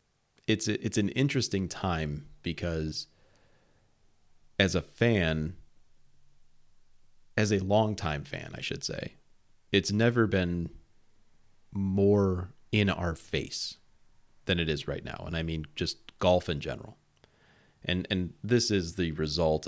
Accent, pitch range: American, 80-100 Hz